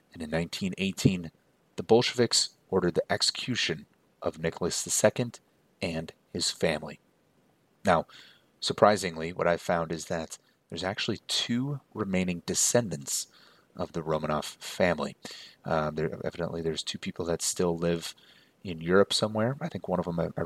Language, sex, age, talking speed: English, male, 30-49, 145 wpm